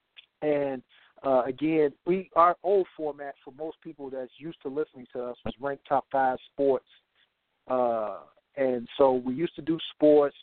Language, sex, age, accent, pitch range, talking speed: English, male, 50-69, American, 135-175 Hz, 165 wpm